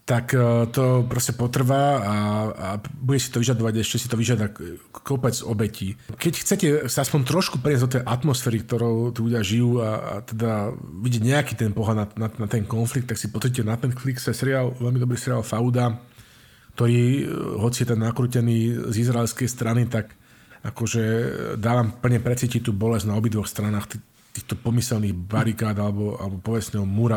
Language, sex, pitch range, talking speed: Slovak, male, 110-125 Hz, 175 wpm